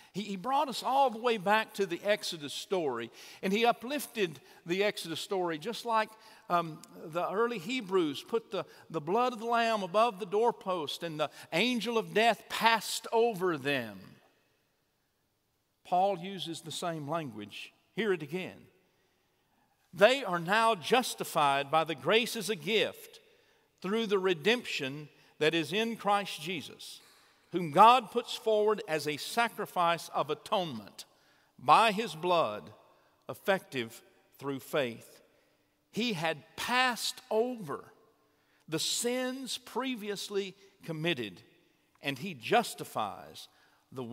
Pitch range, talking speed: 165-225 Hz, 130 wpm